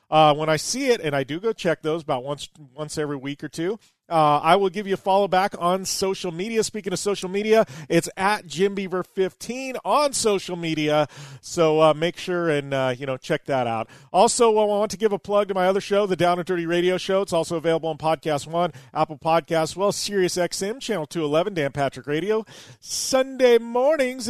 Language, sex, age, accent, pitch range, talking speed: English, male, 40-59, American, 155-205 Hz, 220 wpm